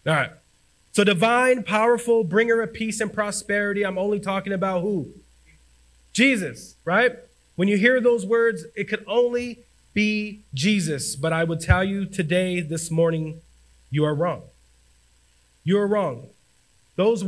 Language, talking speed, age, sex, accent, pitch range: English, 140 wpm, 30-49, male, American, 135-190 Hz